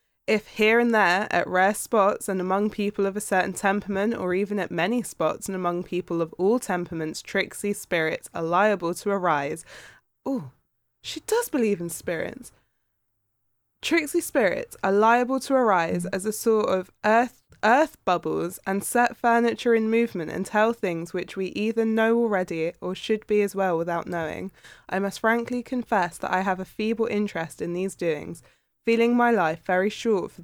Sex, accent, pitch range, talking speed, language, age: female, British, 175-215 Hz, 175 wpm, English, 20-39